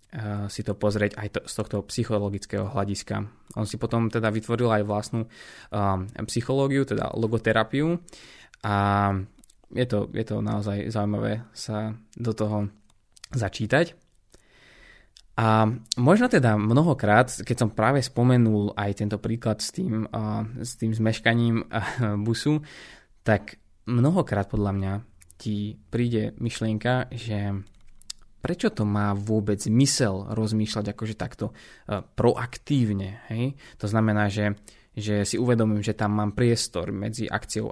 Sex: male